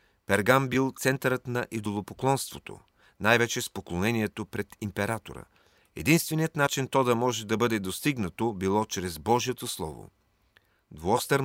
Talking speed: 120 wpm